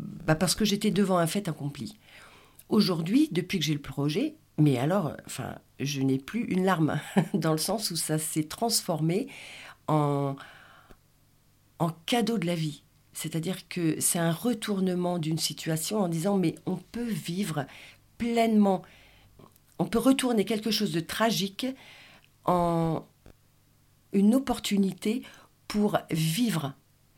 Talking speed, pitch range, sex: 135 wpm, 150-200 Hz, female